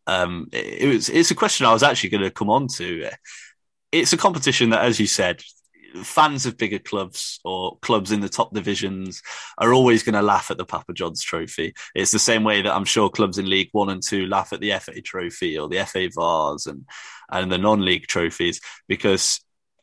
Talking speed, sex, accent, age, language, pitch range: 230 wpm, male, British, 20-39, English, 100-135 Hz